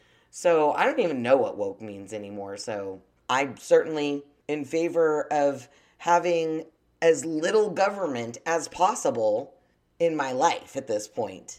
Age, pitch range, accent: 30-49, 125-175 Hz, American